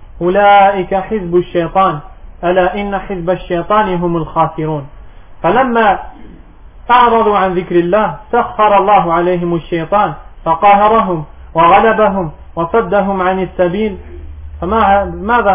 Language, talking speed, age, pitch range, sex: French, 95 wpm, 20-39, 175-205 Hz, male